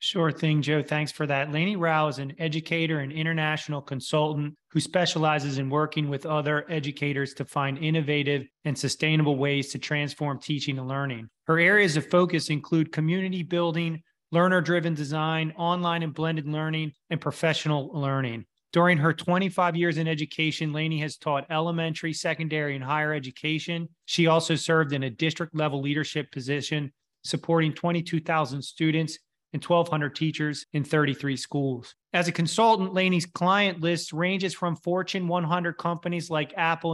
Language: English